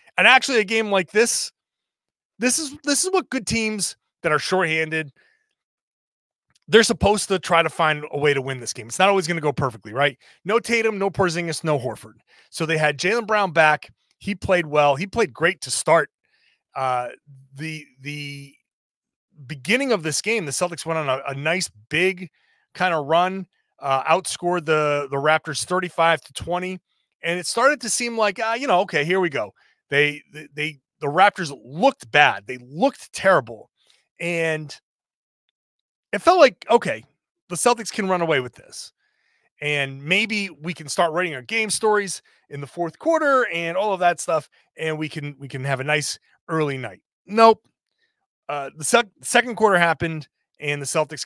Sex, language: male, English